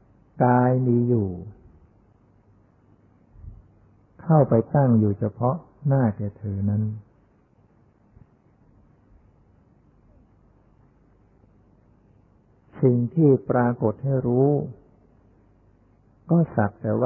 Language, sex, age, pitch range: Thai, male, 60-79, 105-125 Hz